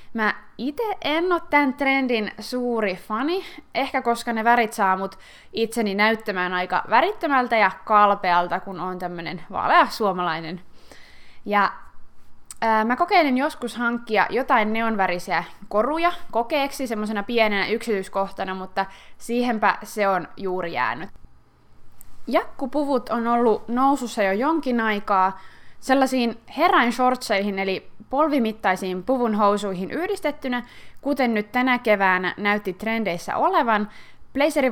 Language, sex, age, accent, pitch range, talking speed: Finnish, female, 20-39, native, 200-265 Hz, 110 wpm